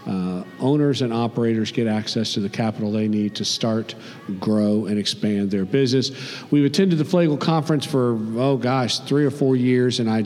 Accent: American